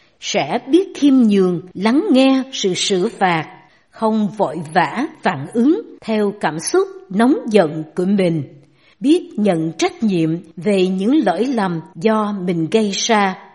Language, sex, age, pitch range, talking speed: Vietnamese, female, 60-79, 185-265 Hz, 145 wpm